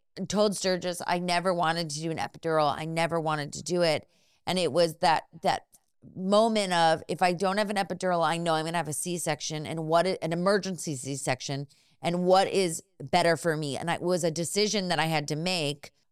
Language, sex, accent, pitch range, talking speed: English, female, American, 155-185 Hz, 210 wpm